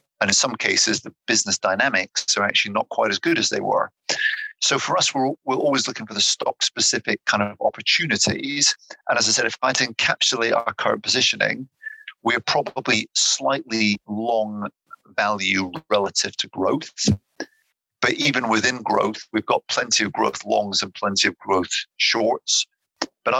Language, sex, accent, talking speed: English, male, British, 165 wpm